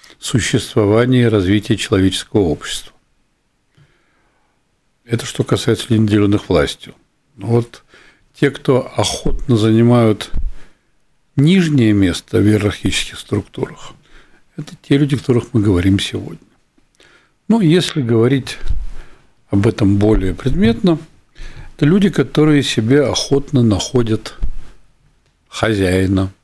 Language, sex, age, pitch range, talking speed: Russian, male, 60-79, 100-145 Hz, 95 wpm